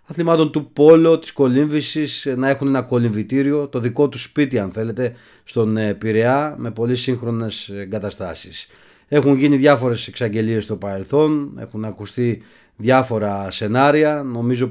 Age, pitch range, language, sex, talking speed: 30-49, 105-135 Hz, Greek, male, 130 wpm